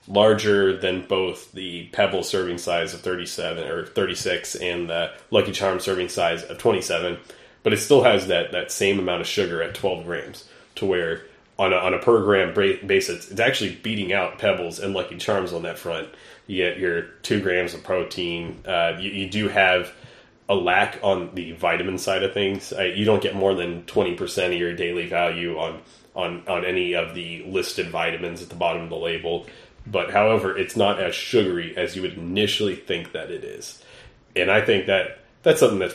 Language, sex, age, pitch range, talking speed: English, male, 30-49, 90-120 Hz, 195 wpm